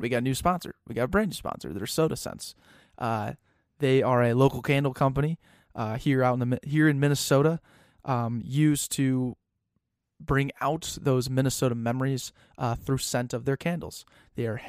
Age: 20-39